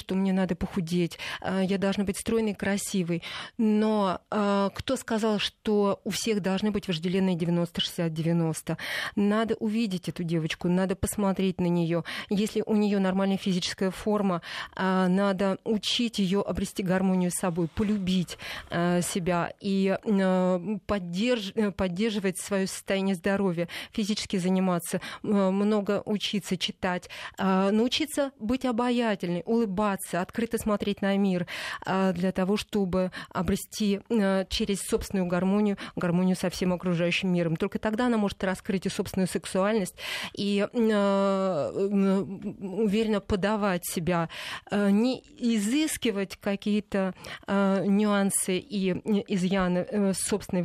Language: Russian